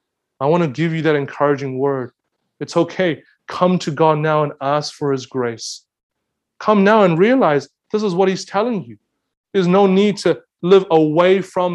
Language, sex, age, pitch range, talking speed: English, male, 30-49, 145-195 Hz, 185 wpm